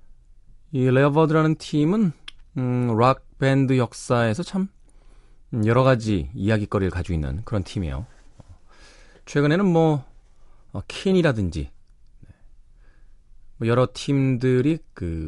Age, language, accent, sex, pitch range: 40-59, Korean, native, male, 95-130 Hz